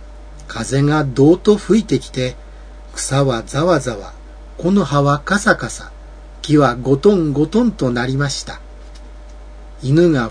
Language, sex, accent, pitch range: Japanese, male, native, 135-185 Hz